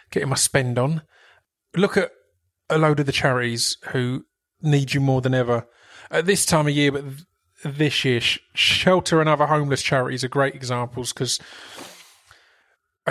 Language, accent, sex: English, British, male